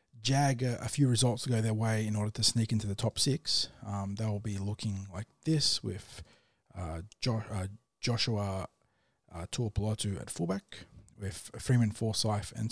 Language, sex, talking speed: English, male, 165 wpm